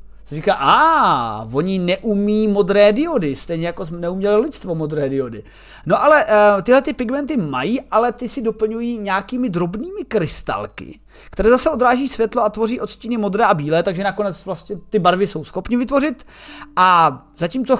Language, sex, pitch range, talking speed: Czech, male, 175-240 Hz, 165 wpm